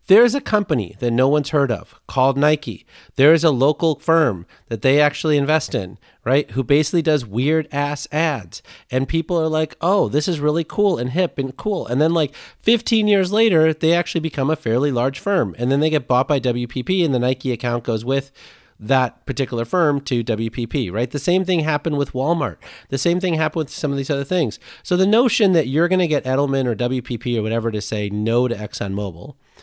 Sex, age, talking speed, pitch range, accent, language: male, 30-49, 215 wpm, 120-160 Hz, American, English